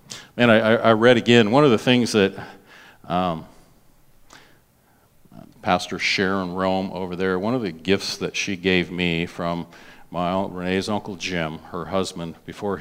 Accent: American